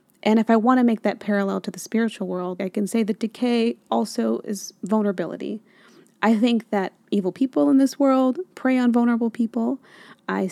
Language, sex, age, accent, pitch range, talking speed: English, female, 30-49, American, 190-235 Hz, 190 wpm